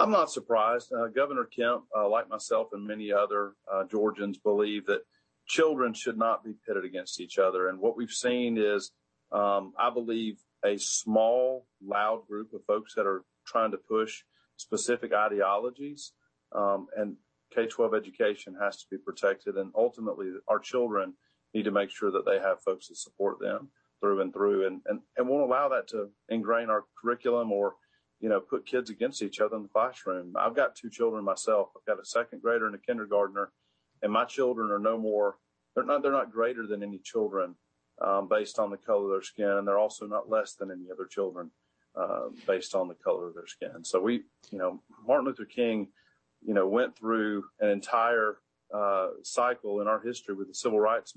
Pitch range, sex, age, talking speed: 100-125 Hz, male, 40-59, 195 wpm